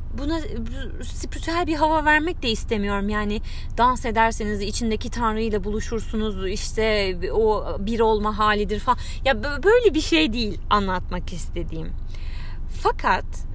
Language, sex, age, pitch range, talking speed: Turkish, female, 30-49, 190-260 Hz, 120 wpm